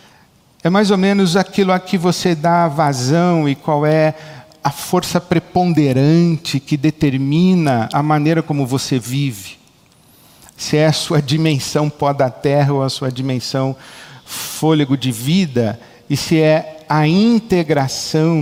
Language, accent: Portuguese, Brazilian